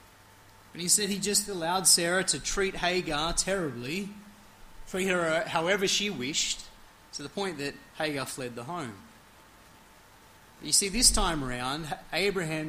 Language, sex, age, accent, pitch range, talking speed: English, male, 30-49, Australian, 130-185 Hz, 145 wpm